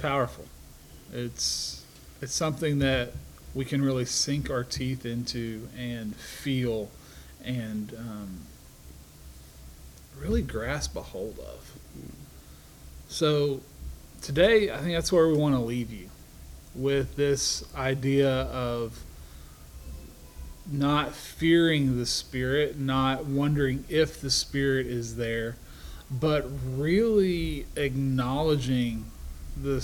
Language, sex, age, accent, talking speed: English, male, 40-59, American, 105 wpm